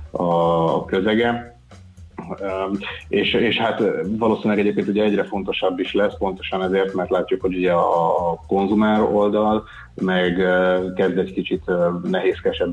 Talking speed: 125 wpm